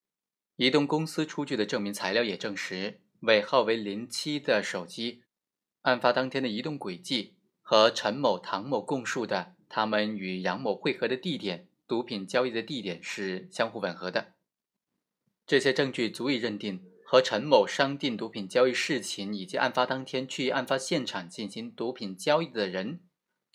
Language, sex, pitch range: Chinese, male, 105-140 Hz